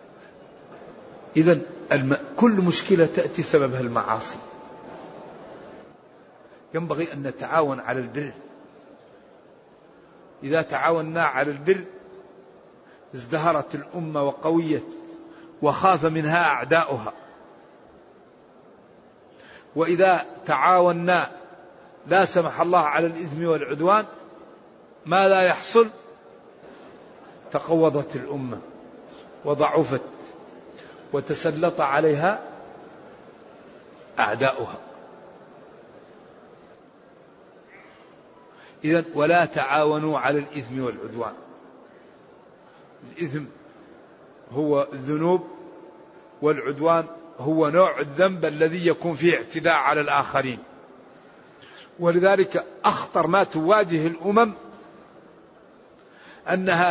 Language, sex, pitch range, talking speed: Arabic, male, 145-180 Hz, 65 wpm